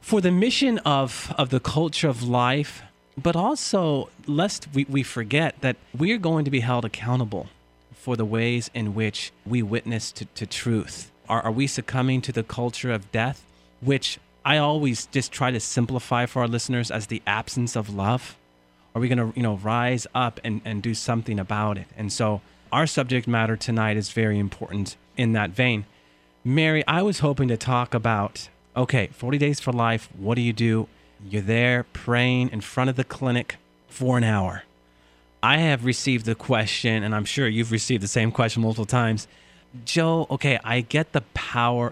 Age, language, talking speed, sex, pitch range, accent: 30-49, English, 185 wpm, male, 110-140 Hz, American